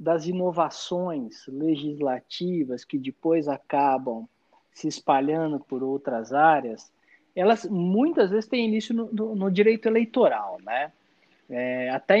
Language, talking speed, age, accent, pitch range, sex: Portuguese, 110 wpm, 20-39, Brazilian, 155-210 Hz, male